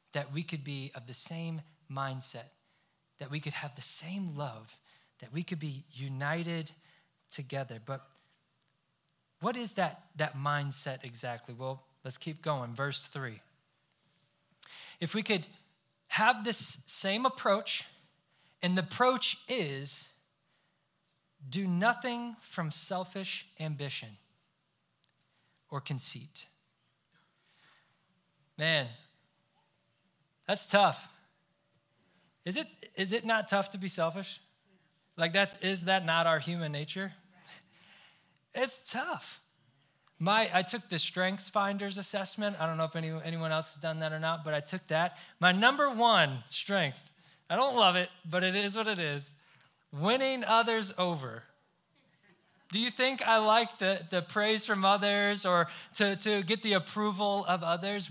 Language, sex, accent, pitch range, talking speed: English, male, American, 150-200 Hz, 135 wpm